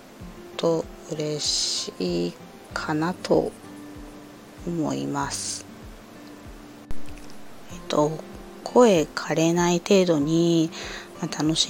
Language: Japanese